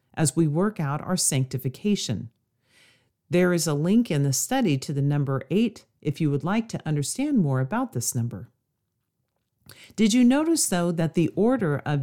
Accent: American